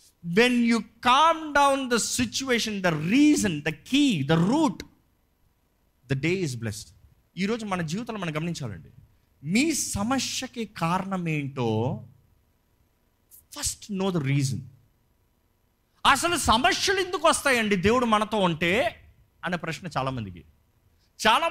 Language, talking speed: Telugu, 125 wpm